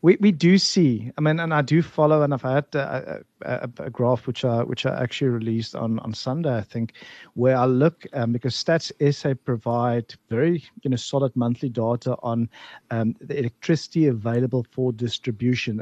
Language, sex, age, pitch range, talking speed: English, male, 50-69, 120-150 Hz, 185 wpm